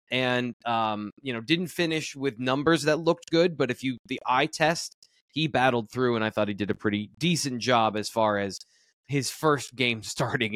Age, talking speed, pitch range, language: 20-39, 205 wpm, 110-145 Hz, English